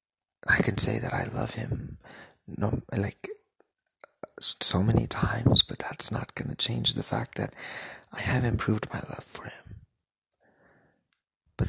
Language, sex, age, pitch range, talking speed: English, male, 30-49, 105-125 Hz, 145 wpm